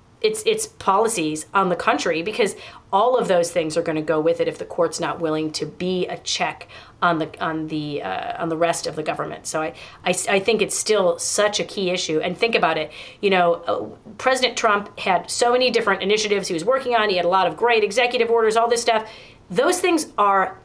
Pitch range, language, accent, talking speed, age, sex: 175-235 Hz, English, American, 230 wpm, 30-49, female